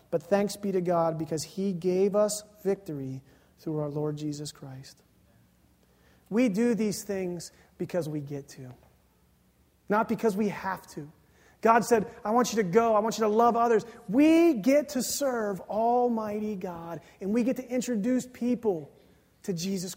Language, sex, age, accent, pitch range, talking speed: English, male, 30-49, American, 175-255 Hz, 165 wpm